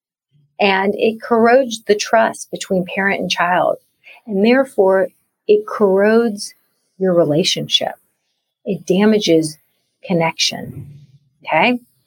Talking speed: 95 wpm